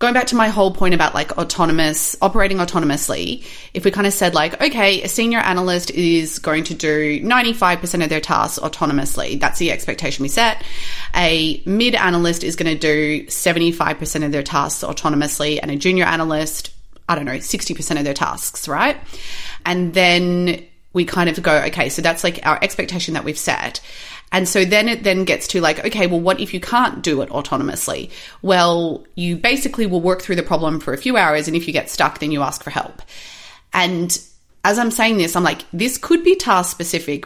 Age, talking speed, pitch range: 30-49, 200 wpm, 155-195 Hz